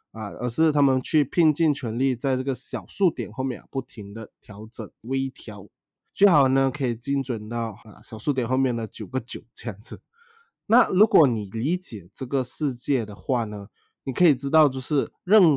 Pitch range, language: 115-150 Hz, Chinese